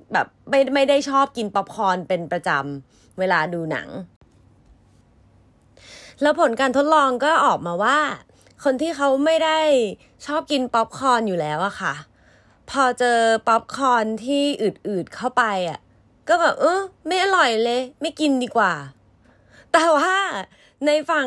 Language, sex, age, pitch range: Thai, female, 20-39, 190-290 Hz